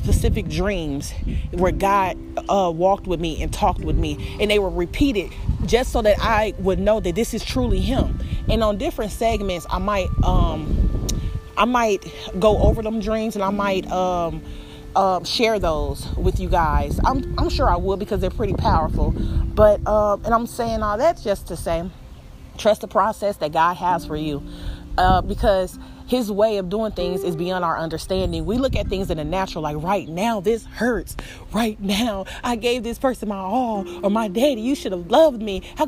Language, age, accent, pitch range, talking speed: English, 30-49, American, 180-240 Hz, 195 wpm